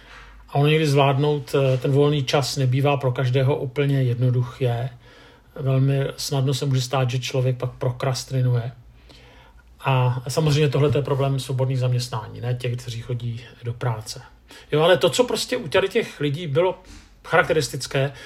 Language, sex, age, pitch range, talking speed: Czech, male, 50-69, 125-160 Hz, 145 wpm